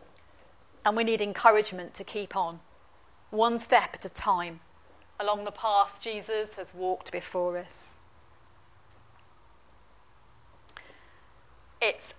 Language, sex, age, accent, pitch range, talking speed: English, female, 40-59, British, 175-220 Hz, 105 wpm